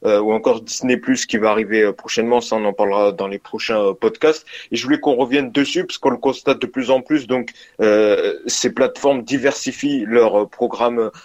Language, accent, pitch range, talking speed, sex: French, French, 110-135 Hz, 215 wpm, male